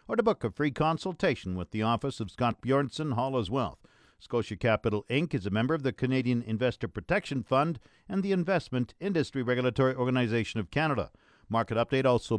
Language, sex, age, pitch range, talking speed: English, male, 50-69, 115-155 Hz, 180 wpm